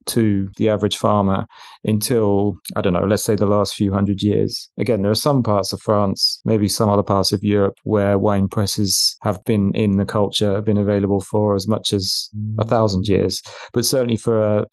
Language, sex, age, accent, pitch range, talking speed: English, male, 30-49, British, 100-115 Hz, 205 wpm